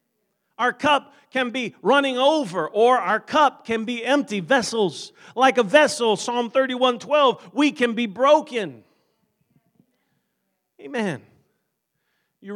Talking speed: 120 wpm